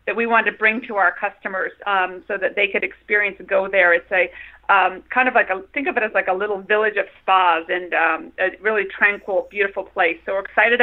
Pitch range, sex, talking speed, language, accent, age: 190-220 Hz, female, 250 wpm, English, American, 40-59